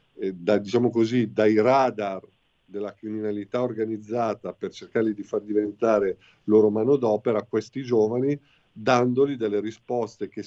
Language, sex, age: Italian, male, 50-69